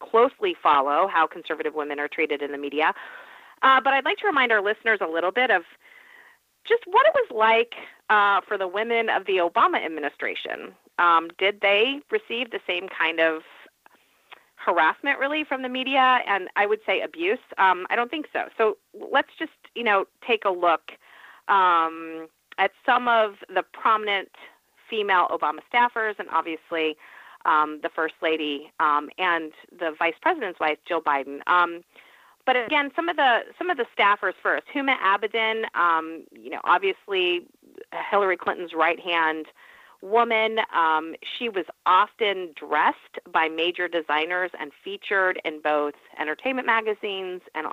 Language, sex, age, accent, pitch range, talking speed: English, female, 40-59, American, 160-240 Hz, 160 wpm